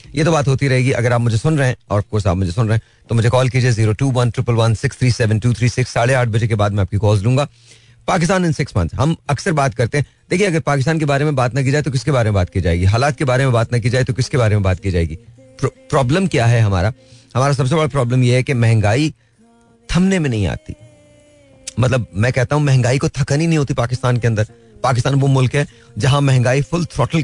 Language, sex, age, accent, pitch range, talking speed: Hindi, male, 30-49, native, 115-135 Hz, 265 wpm